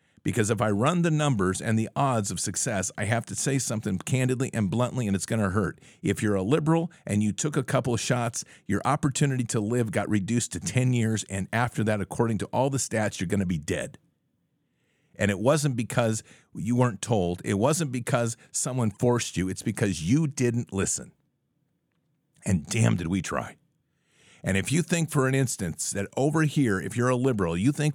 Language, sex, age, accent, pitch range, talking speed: English, male, 50-69, American, 105-145 Hz, 205 wpm